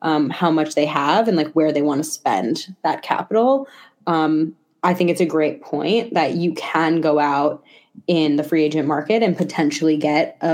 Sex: female